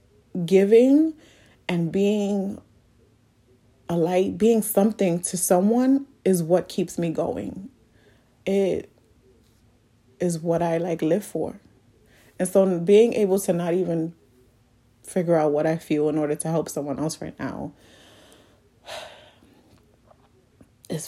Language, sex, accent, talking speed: English, female, American, 120 wpm